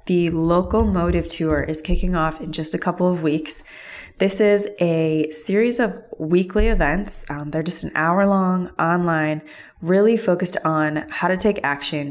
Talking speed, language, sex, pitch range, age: 155 wpm, English, female, 155-180 Hz, 20-39